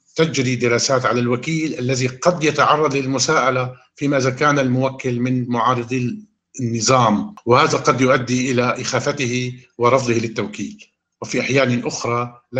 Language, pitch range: Arabic, 120-145 Hz